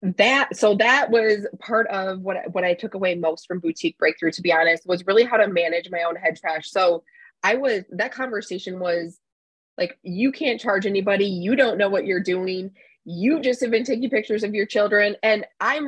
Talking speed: 210 wpm